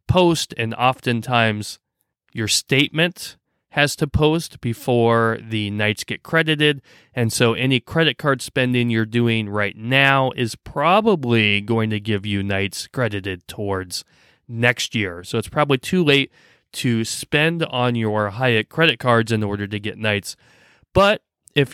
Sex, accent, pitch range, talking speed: male, American, 110-145 Hz, 145 wpm